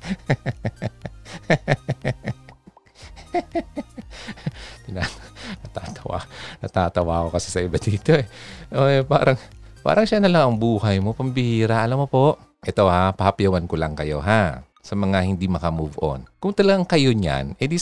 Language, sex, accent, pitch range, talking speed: Filipino, male, native, 90-140 Hz, 135 wpm